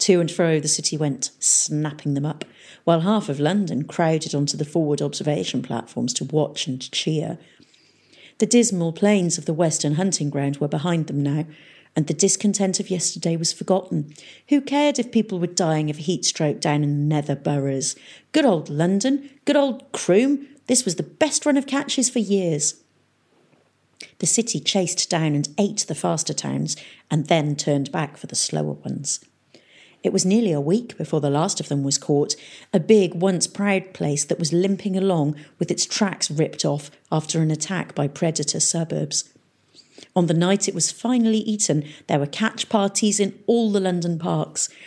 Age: 40-59